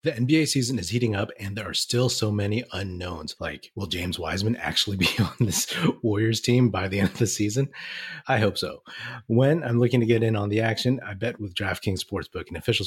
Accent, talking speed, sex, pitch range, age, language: American, 225 wpm, male, 95-115 Hz, 30-49, English